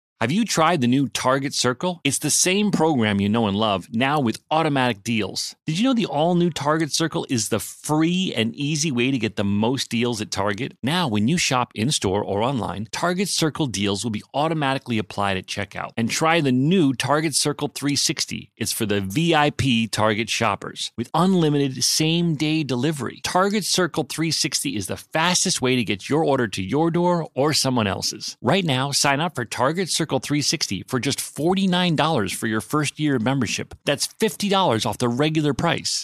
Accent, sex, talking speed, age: American, male, 185 wpm, 30-49